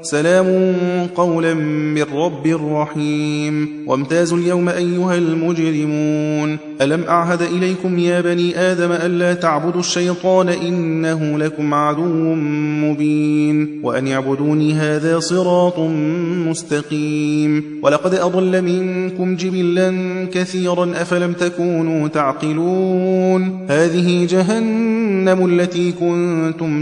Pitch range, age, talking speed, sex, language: 150-175 Hz, 30-49, 85 wpm, male, Persian